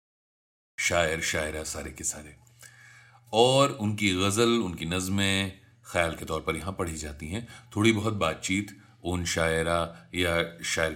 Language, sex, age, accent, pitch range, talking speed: Hindi, male, 40-59, native, 80-105 Hz, 135 wpm